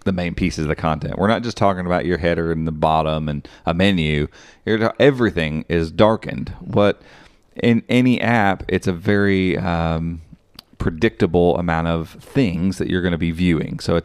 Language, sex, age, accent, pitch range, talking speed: English, male, 30-49, American, 80-100 Hz, 180 wpm